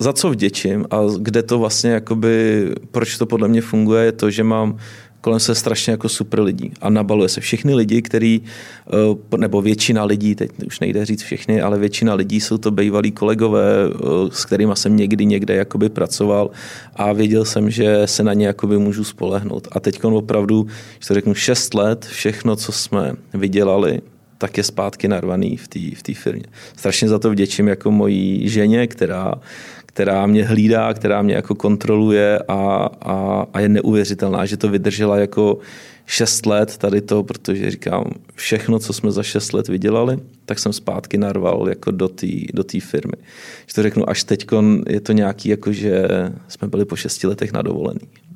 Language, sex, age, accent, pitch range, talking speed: Czech, male, 30-49, native, 100-110 Hz, 170 wpm